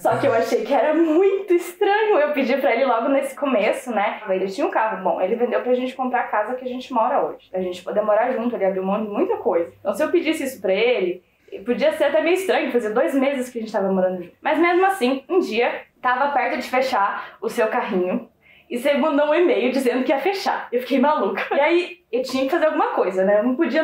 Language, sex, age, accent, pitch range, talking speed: Portuguese, female, 10-29, Brazilian, 200-325 Hz, 250 wpm